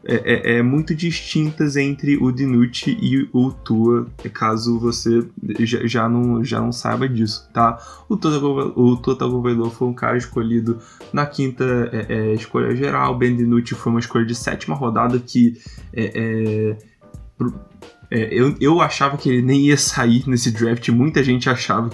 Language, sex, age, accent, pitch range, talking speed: Portuguese, male, 20-39, Brazilian, 120-140 Hz, 160 wpm